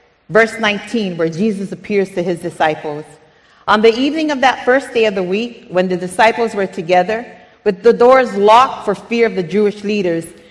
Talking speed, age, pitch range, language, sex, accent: 190 wpm, 40-59, 180-240 Hz, English, female, American